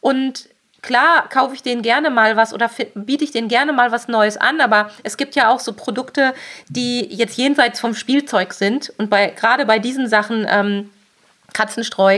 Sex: female